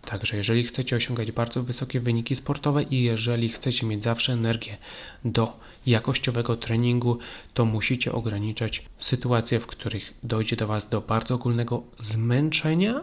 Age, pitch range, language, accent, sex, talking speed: 30-49, 115-135 Hz, Polish, native, male, 140 wpm